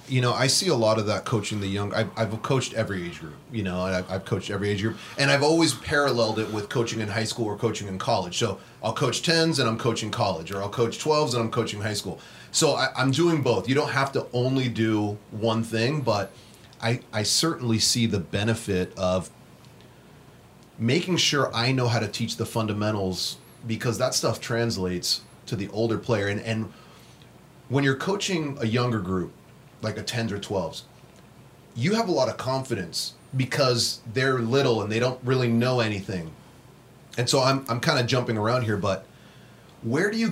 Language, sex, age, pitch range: English, male, 30-49, 105-135 Hz